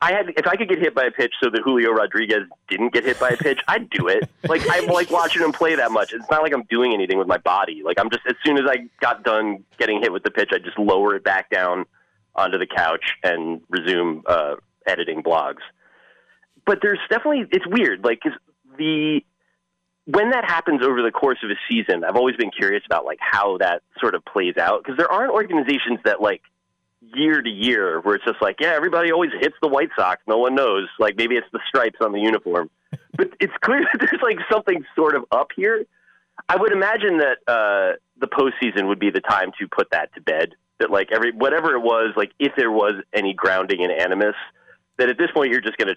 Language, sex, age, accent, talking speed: English, male, 30-49, American, 230 wpm